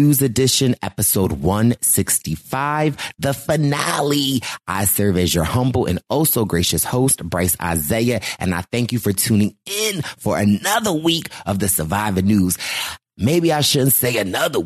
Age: 30-49